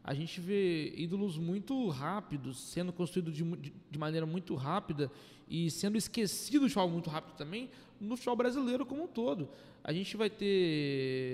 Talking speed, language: 160 wpm, Portuguese